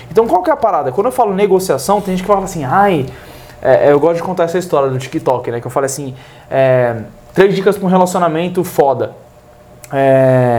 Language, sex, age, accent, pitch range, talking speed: Portuguese, male, 20-39, Brazilian, 170-230 Hz, 215 wpm